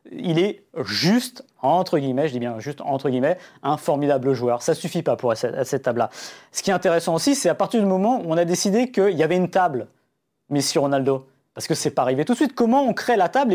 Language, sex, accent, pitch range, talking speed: French, male, French, 135-190 Hz, 255 wpm